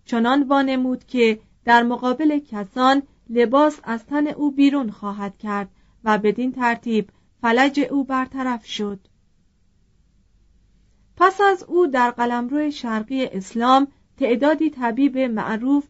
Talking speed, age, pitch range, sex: 115 wpm, 40-59, 220-270 Hz, female